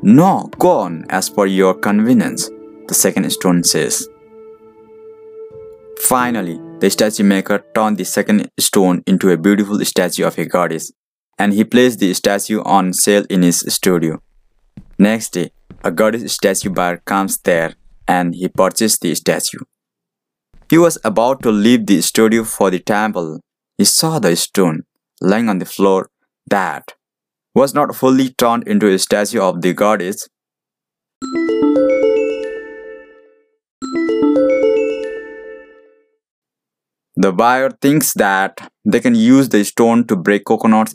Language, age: English, 20-39